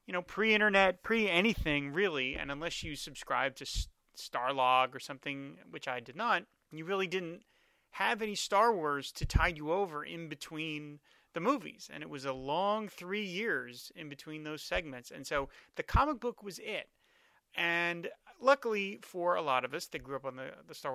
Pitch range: 140-195 Hz